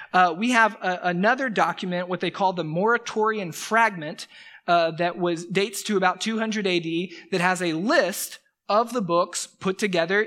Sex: male